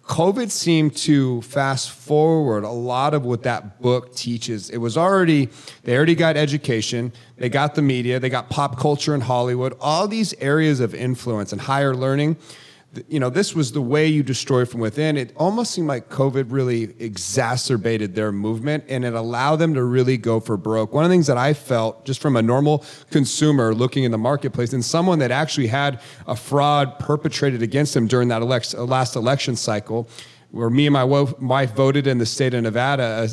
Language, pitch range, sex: English, 120-145 Hz, male